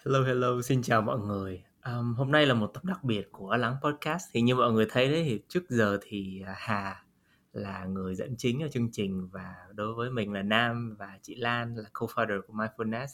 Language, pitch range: Vietnamese, 100-130 Hz